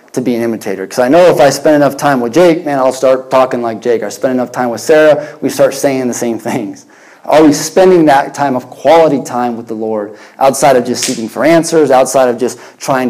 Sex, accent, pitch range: male, American, 120-155 Hz